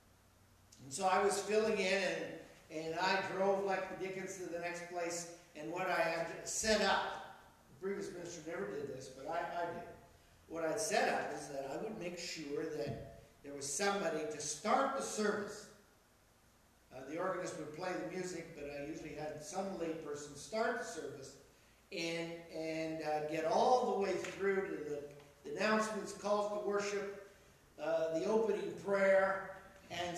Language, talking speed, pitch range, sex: English, 175 wpm, 160-200 Hz, male